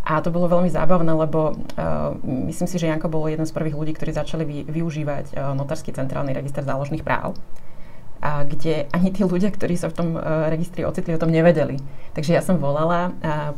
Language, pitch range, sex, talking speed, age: Slovak, 145-165 Hz, female, 210 wpm, 30-49